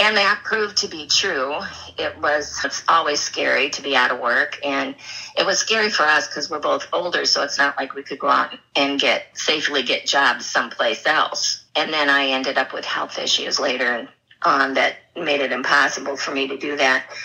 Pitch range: 140-175 Hz